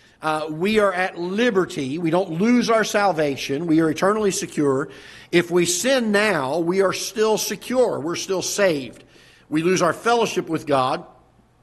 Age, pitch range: 50-69, 155-205 Hz